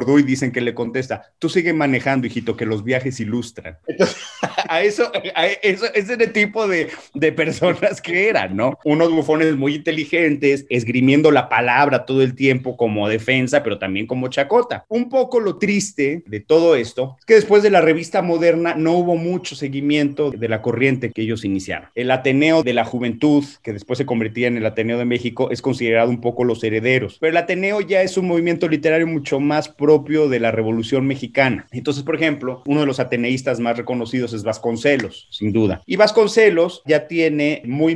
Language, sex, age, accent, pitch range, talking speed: Spanish, male, 30-49, Mexican, 120-165 Hz, 190 wpm